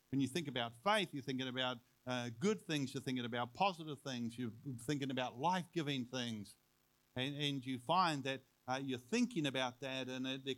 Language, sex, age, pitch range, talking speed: English, male, 50-69, 125-160 Hz, 185 wpm